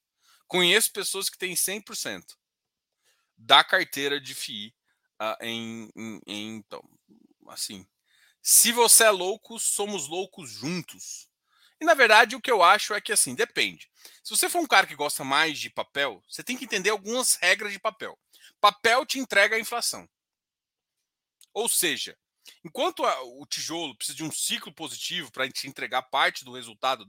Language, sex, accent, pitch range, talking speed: Portuguese, male, Brazilian, 150-230 Hz, 160 wpm